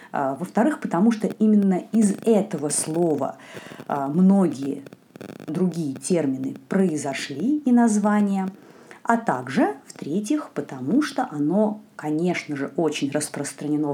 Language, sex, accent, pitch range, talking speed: Russian, female, native, 165-235 Hz, 100 wpm